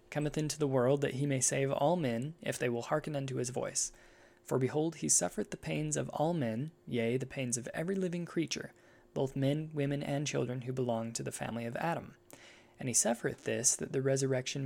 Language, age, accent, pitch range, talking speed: English, 20-39, American, 125-150 Hz, 215 wpm